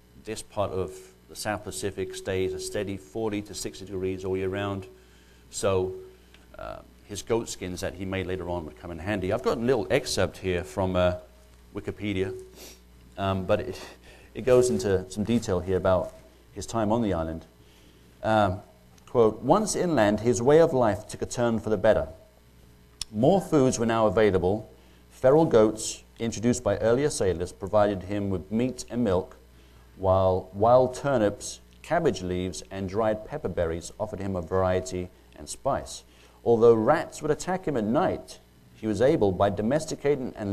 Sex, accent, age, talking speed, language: male, British, 40-59, 165 wpm, English